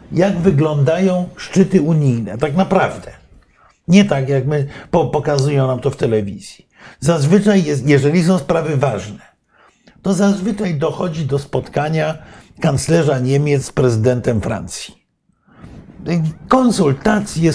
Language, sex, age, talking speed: Polish, male, 50-69, 110 wpm